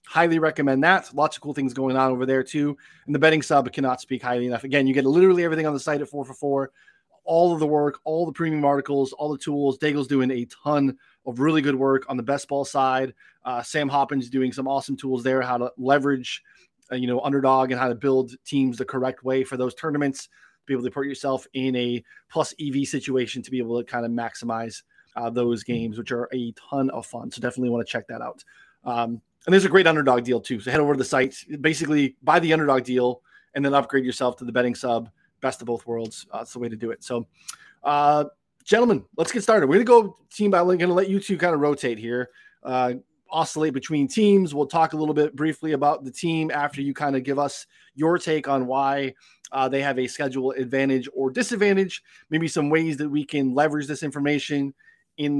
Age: 20-39